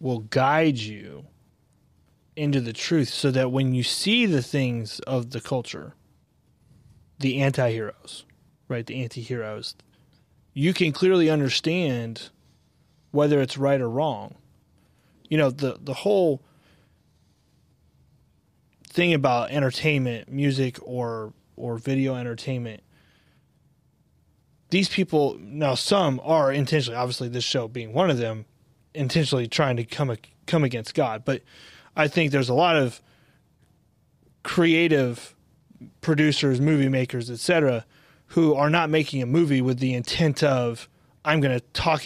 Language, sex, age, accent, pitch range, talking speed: English, male, 30-49, American, 125-155 Hz, 130 wpm